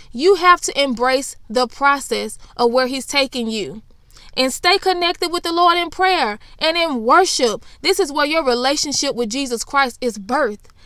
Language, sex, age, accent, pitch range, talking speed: English, female, 20-39, American, 245-330 Hz, 175 wpm